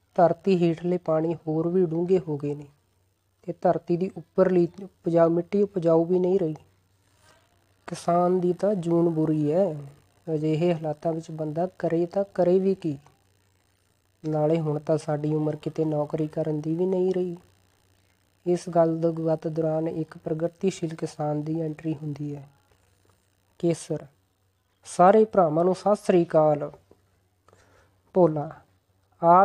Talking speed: 120 wpm